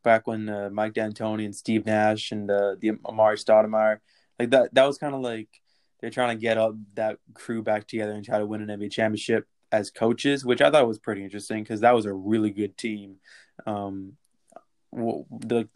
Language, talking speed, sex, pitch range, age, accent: English, 210 wpm, male, 105-120 Hz, 20-39, American